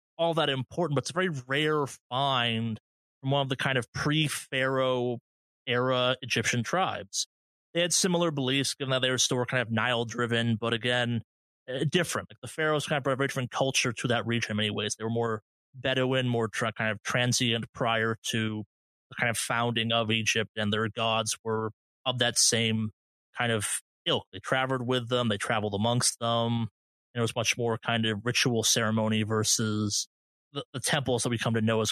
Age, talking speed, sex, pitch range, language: 30-49, 195 wpm, male, 110-135 Hz, English